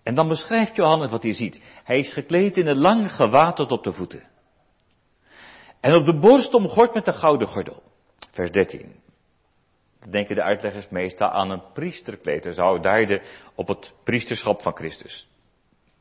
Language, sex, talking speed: Dutch, male, 165 wpm